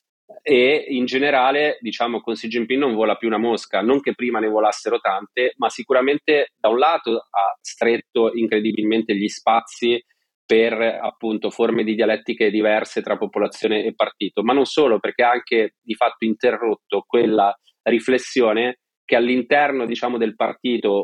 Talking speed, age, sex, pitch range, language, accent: 155 wpm, 30-49, male, 110-135 Hz, Italian, native